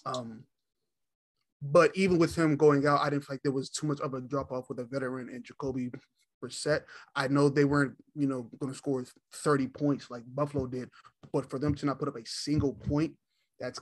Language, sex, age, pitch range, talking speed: English, male, 20-39, 135-150 Hz, 215 wpm